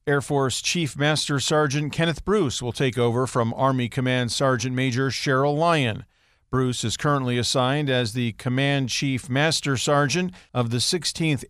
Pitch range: 125-150 Hz